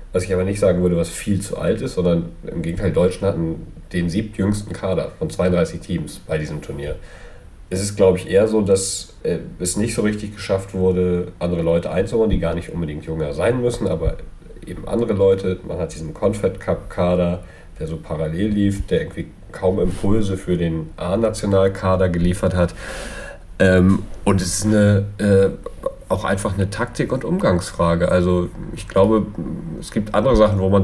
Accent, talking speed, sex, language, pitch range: German, 180 wpm, male, German, 85-100 Hz